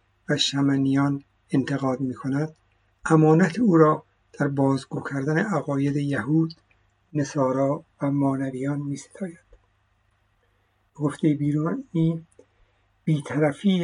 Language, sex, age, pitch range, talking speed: Persian, male, 60-79, 105-155 Hz, 90 wpm